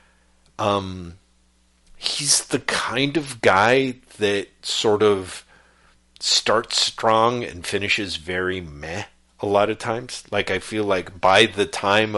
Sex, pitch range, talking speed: male, 90-110 Hz, 130 wpm